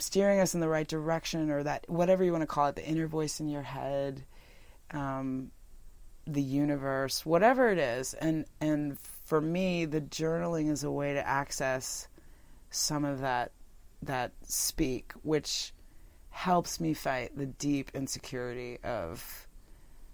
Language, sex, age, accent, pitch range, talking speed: English, female, 30-49, American, 140-165 Hz, 150 wpm